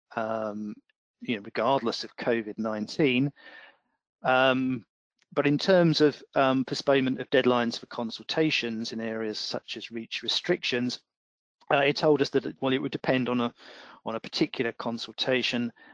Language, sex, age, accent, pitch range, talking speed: English, male, 40-59, British, 115-135 Hz, 145 wpm